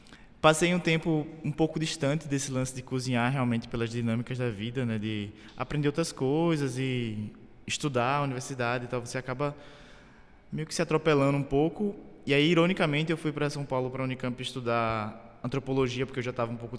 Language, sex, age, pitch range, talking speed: Portuguese, male, 20-39, 120-140 Hz, 190 wpm